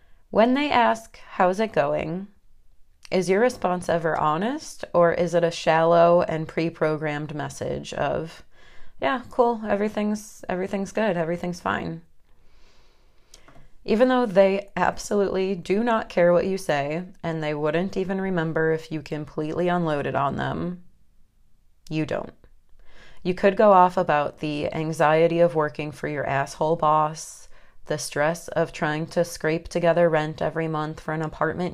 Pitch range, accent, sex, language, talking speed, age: 155-180 Hz, American, female, English, 145 wpm, 30-49